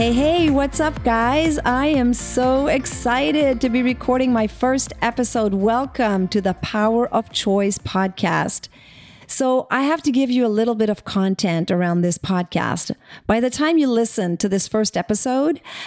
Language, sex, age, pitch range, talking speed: English, female, 40-59, 195-255 Hz, 170 wpm